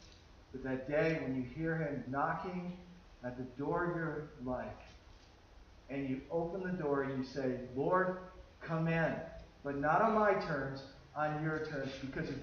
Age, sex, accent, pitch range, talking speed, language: 40-59, male, American, 135-190 Hz, 165 wpm, English